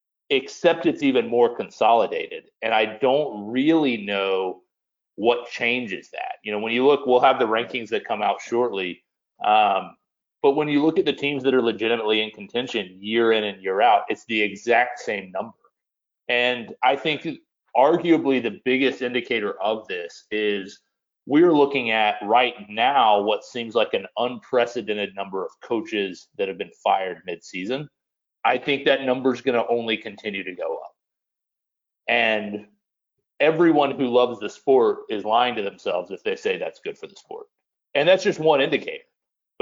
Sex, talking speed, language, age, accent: male, 170 wpm, English, 30-49, American